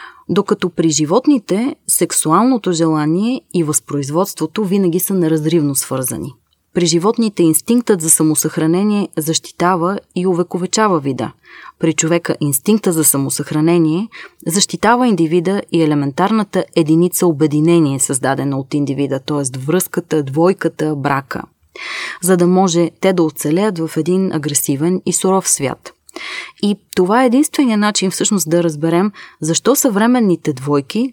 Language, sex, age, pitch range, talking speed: Bulgarian, female, 20-39, 155-200 Hz, 120 wpm